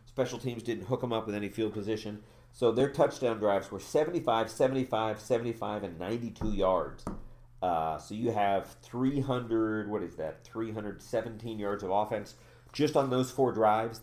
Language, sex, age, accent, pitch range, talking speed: English, male, 40-59, American, 105-125 Hz, 165 wpm